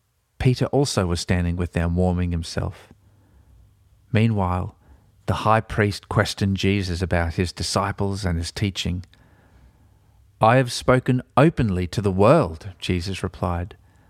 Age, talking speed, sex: 40-59, 125 wpm, male